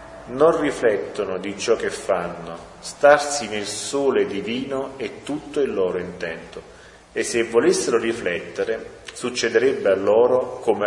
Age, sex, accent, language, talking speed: 30-49, male, native, Italian, 125 wpm